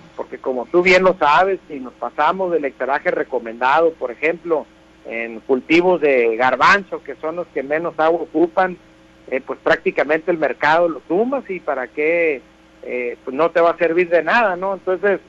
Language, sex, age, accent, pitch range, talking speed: Spanish, male, 60-79, Mexican, 165-220 Hz, 180 wpm